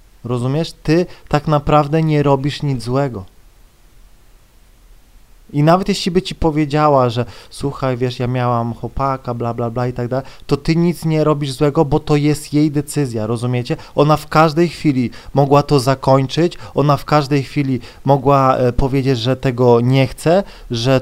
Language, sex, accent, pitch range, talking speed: Polish, male, native, 125-160 Hz, 165 wpm